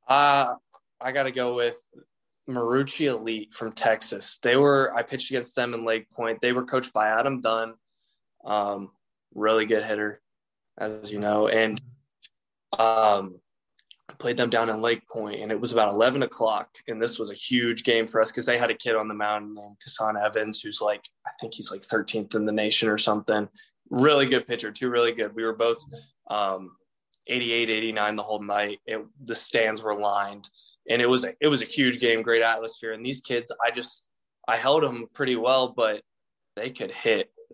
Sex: male